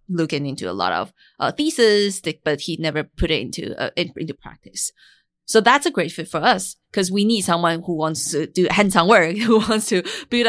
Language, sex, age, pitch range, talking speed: English, female, 20-39, 165-210 Hz, 210 wpm